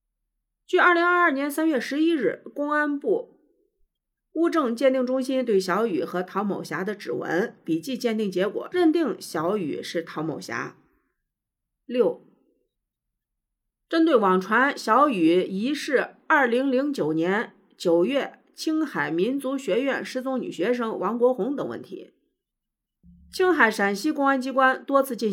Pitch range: 190-310 Hz